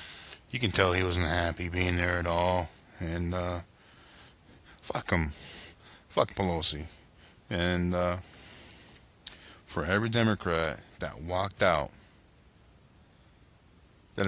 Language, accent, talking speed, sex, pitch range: English, American, 105 wpm, male, 85-95 Hz